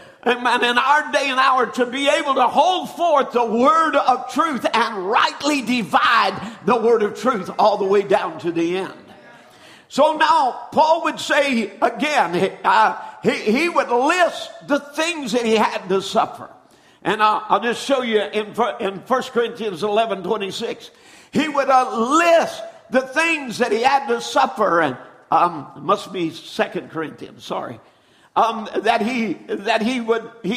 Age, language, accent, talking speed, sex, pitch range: 50-69, English, American, 170 wpm, male, 220-300 Hz